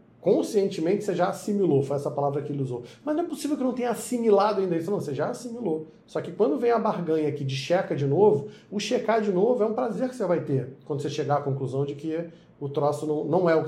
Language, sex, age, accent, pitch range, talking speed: Portuguese, male, 40-59, Brazilian, 145-210 Hz, 270 wpm